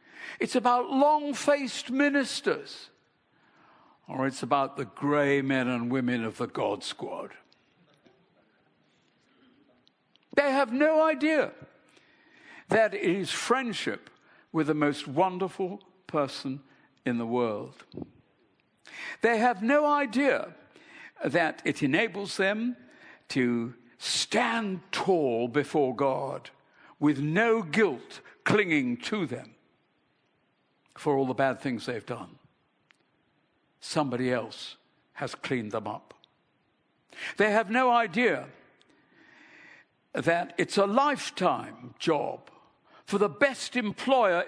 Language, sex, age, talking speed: English, male, 60-79, 105 wpm